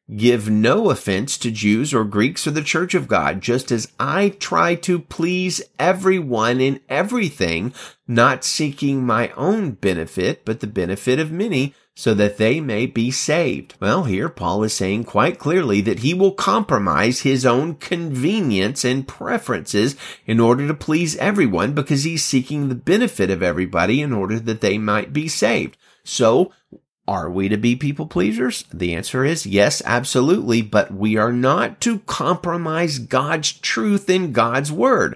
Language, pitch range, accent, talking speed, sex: English, 105-145 Hz, American, 160 wpm, male